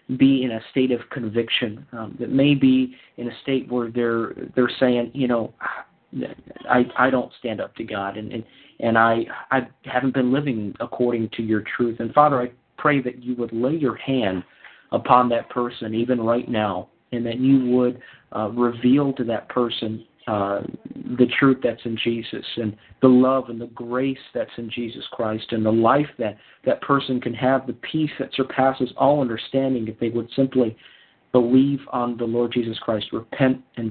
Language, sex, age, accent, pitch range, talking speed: English, male, 40-59, American, 115-130 Hz, 185 wpm